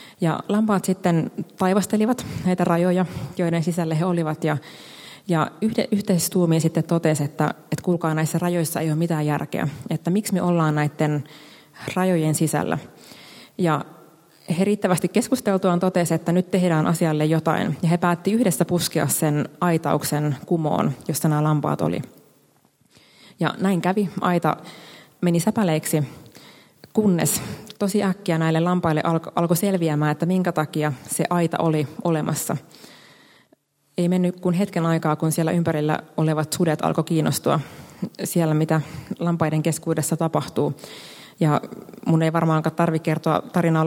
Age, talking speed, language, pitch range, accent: 30-49, 135 wpm, Finnish, 155-180 Hz, native